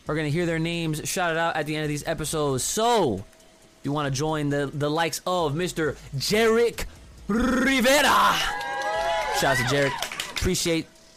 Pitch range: 120-195 Hz